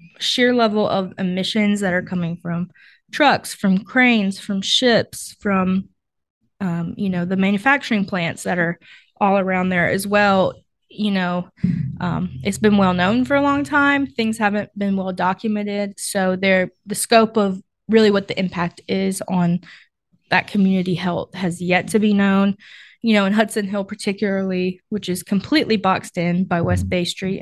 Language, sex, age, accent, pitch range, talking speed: English, female, 20-39, American, 180-210 Hz, 165 wpm